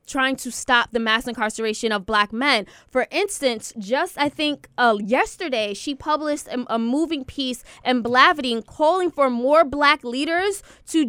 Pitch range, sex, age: 245-295 Hz, female, 20-39